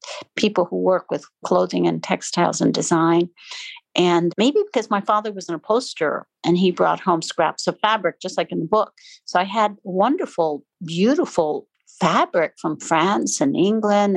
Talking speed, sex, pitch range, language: 165 wpm, female, 170-220 Hz, English